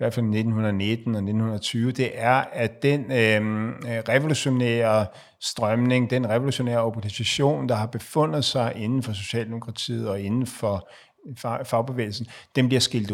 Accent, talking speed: native, 135 wpm